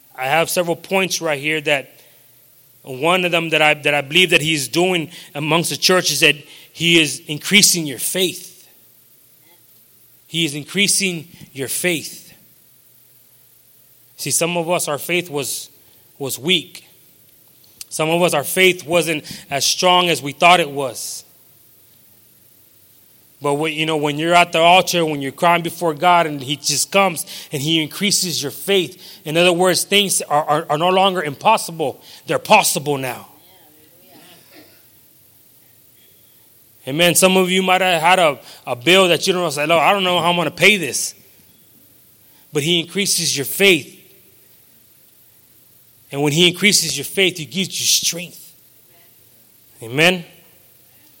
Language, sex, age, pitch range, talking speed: English, male, 20-39, 140-180 Hz, 155 wpm